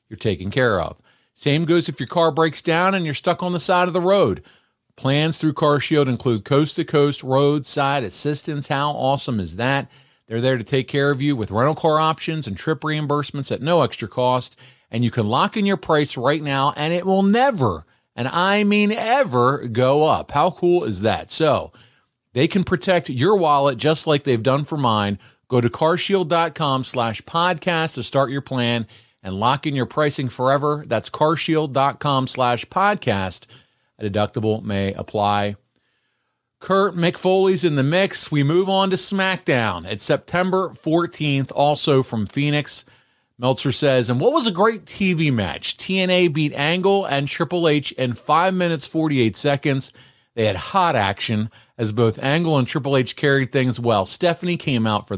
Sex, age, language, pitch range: male, 40-59, English, 125-165 Hz